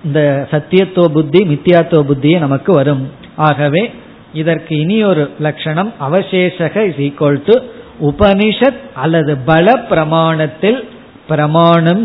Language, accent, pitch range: Tamil, native, 150-205 Hz